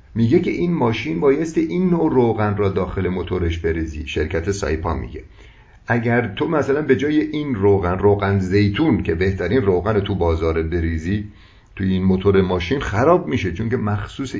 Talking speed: 165 wpm